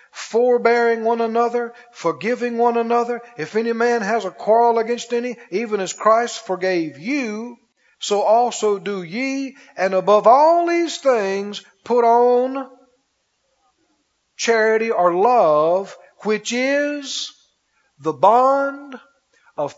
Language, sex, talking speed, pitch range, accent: English, male, 115 wpm, 175-240 Hz, American